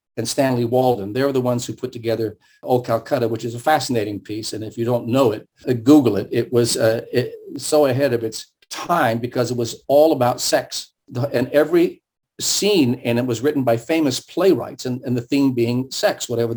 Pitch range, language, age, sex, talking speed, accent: 120-145 Hz, English, 50-69, male, 205 wpm, American